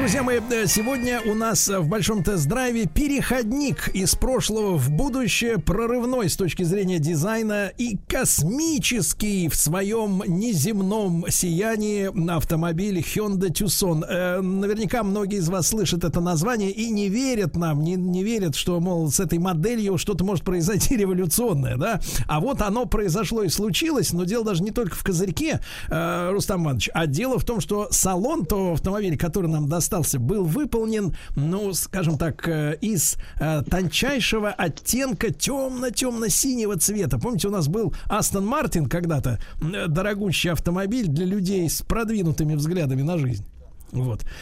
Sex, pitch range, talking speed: male, 165-220 Hz, 140 wpm